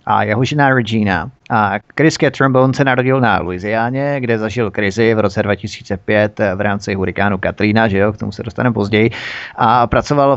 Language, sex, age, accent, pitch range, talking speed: Czech, male, 30-49, native, 105-125 Hz, 170 wpm